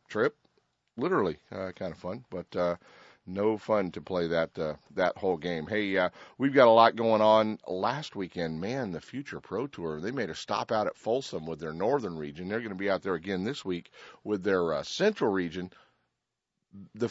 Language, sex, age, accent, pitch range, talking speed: English, male, 50-69, American, 90-115 Hz, 205 wpm